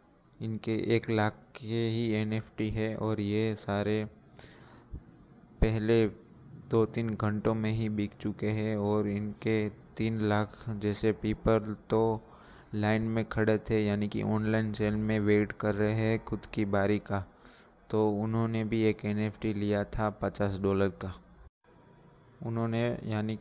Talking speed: 140 wpm